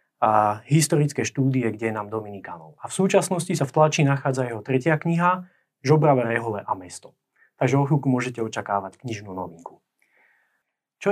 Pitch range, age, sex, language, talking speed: 120-150 Hz, 20-39, male, Slovak, 150 wpm